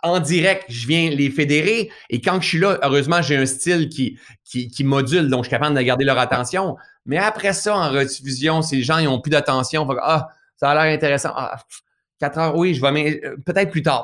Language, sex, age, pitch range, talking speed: French, male, 30-49, 125-155 Hz, 235 wpm